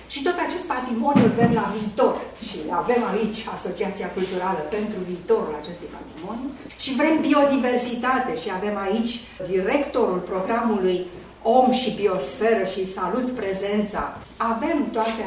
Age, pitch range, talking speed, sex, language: 40-59, 190-255 Hz, 130 wpm, female, English